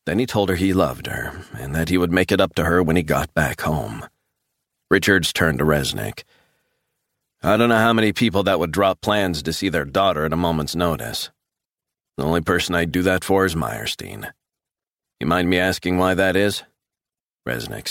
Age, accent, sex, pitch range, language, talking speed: 40-59, American, male, 85-95 Hz, English, 200 wpm